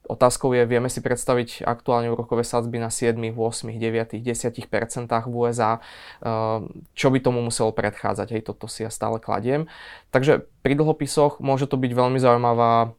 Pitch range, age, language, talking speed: 115-125 Hz, 20-39, Slovak, 155 wpm